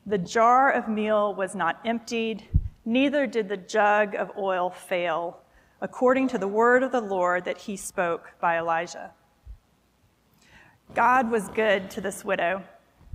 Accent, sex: American, female